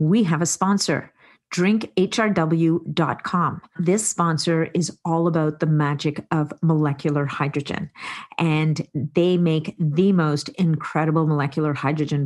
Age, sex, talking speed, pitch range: 40-59, female, 115 wpm, 155-180 Hz